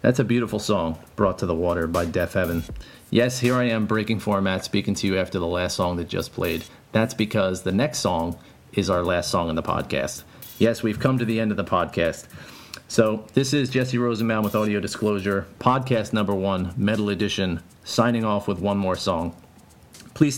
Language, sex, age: English, male, 40-59